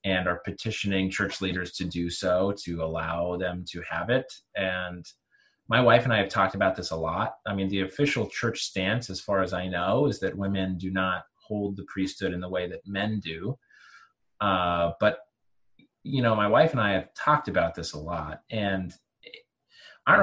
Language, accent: English, American